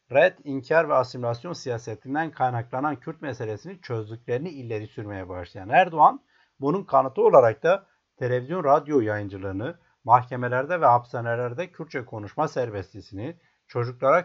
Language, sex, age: Turkish, male, 60-79